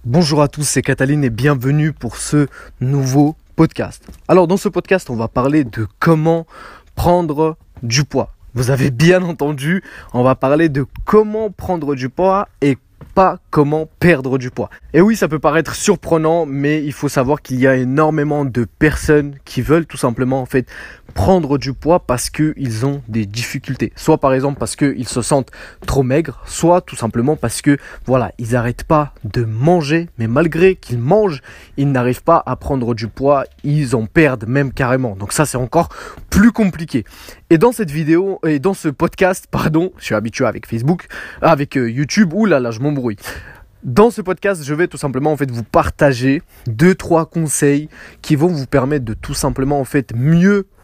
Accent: French